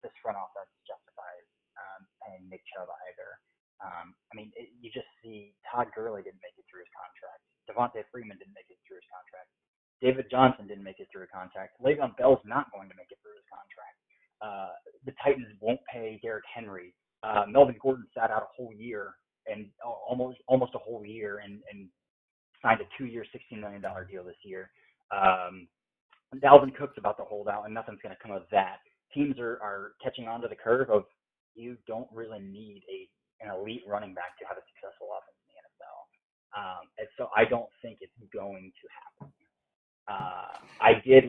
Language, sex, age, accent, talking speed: English, male, 20-39, American, 195 wpm